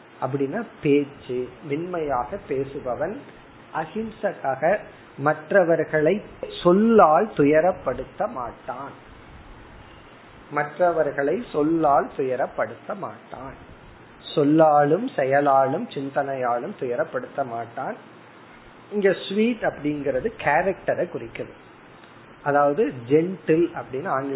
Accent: native